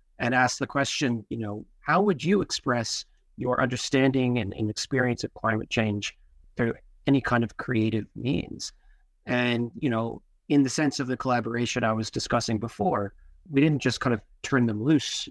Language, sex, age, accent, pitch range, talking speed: English, male, 40-59, American, 110-140 Hz, 175 wpm